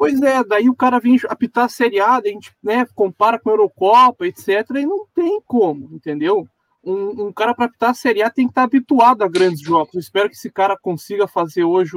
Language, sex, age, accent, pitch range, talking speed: Portuguese, male, 20-39, Brazilian, 170-250 Hz, 220 wpm